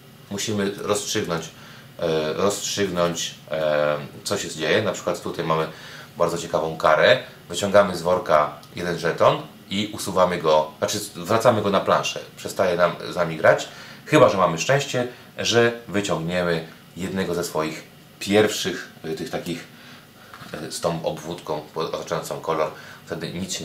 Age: 30-49